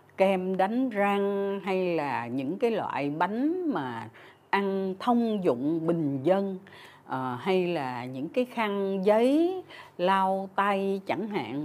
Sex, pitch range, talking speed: female, 150-230 Hz, 130 wpm